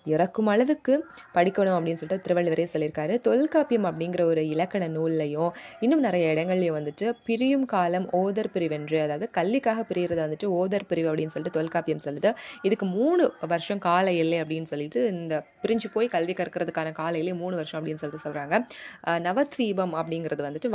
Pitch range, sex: 160-205 Hz, female